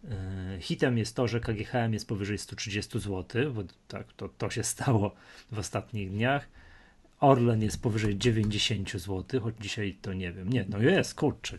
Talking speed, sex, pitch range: 165 wpm, male, 100-125 Hz